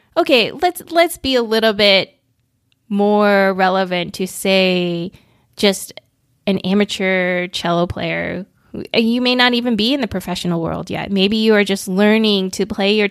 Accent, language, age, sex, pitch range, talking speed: American, English, 20-39, female, 175-215 Hz, 160 wpm